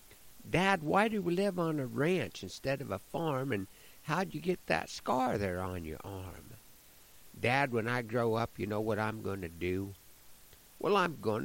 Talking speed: 195 wpm